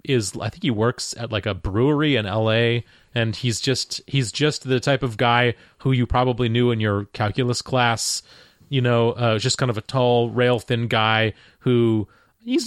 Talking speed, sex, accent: 195 wpm, male, American